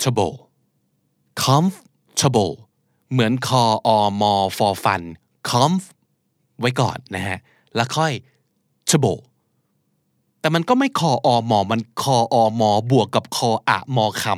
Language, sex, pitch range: Thai, male, 95-150 Hz